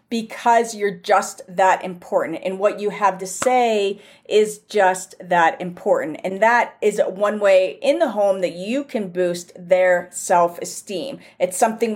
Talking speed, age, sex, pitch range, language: 160 wpm, 40-59, female, 195-235 Hz, English